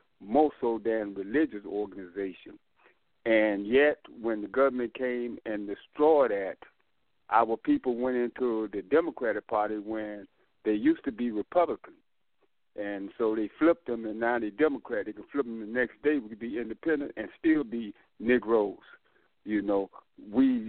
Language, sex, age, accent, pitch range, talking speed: English, male, 60-79, American, 110-145 Hz, 155 wpm